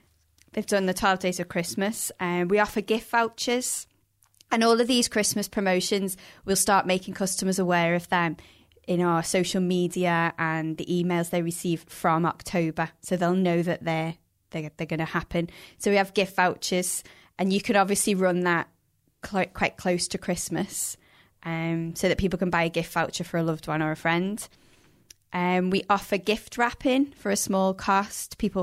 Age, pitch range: 20-39, 170-195 Hz